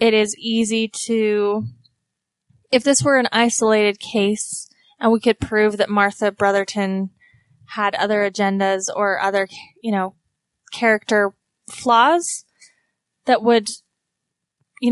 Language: English